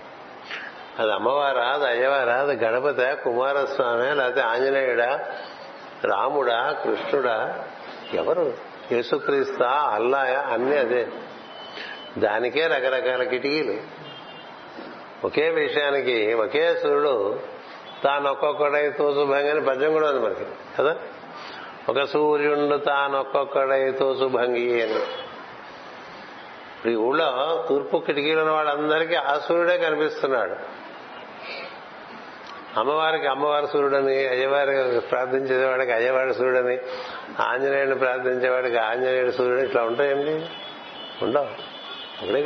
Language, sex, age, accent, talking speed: Telugu, male, 60-79, native, 90 wpm